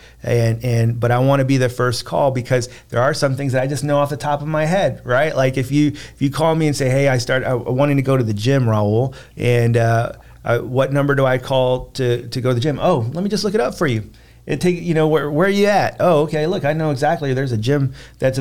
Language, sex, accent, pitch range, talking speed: English, male, American, 120-140 Hz, 285 wpm